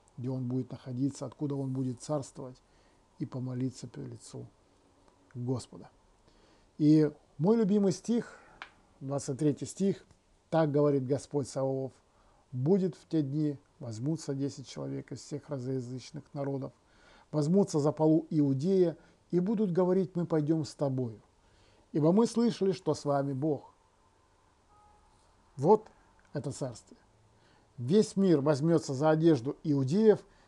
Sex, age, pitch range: male, 50-69, 130-160 Hz